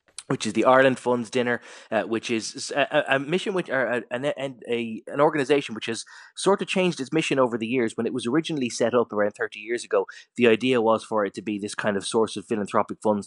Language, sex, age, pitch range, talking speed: English, male, 20-39, 105-125 Hz, 240 wpm